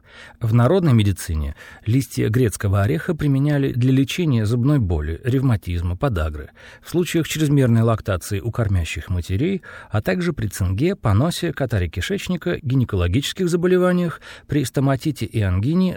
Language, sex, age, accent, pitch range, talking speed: Russian, male, 40-59, native, 105-155 Hz, 125 wpm